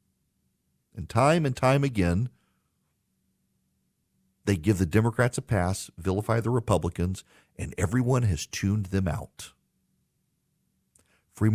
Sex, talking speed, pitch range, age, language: male, 110 wpm, 95-130 Hz, 50-69, English